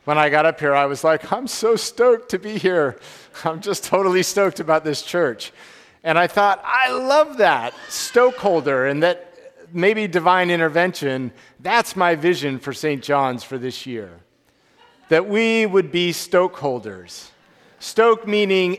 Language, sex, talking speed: English, male, 155 wpm